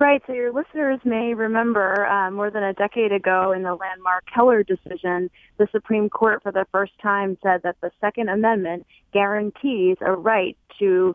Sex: female